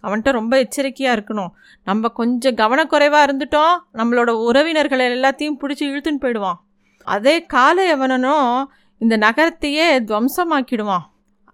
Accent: native